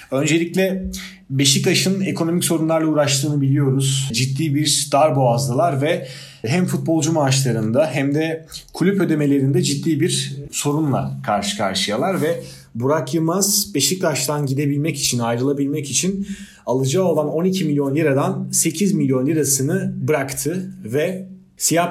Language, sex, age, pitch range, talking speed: Turkish, male, 30-49, 135-175 Hz, 110 wpm